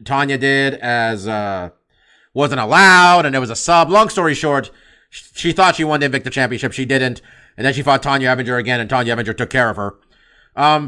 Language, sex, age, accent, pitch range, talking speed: English, male, 30-49, American, 120-160 Hz, 210 wpm